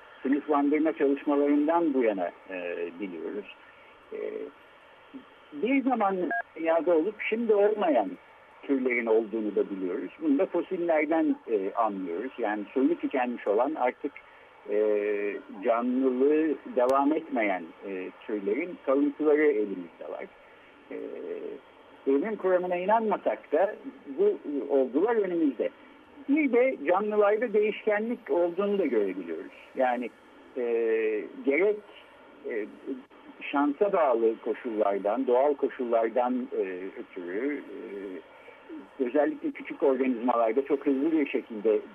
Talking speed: 100 wpm